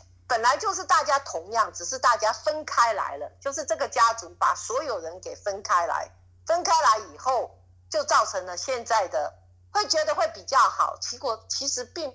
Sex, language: female, Chinese